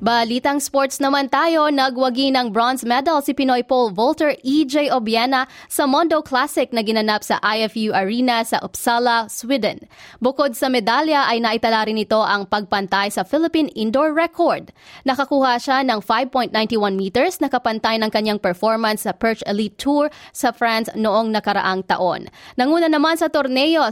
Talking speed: 150 wpm